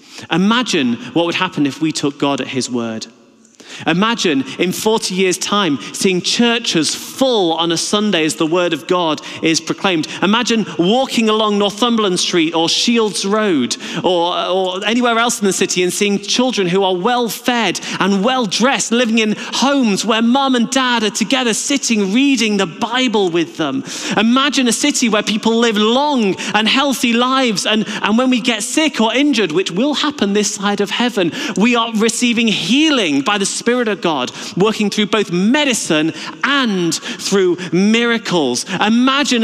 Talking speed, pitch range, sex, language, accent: 165 wpm, 165-240 Hz, male, English, British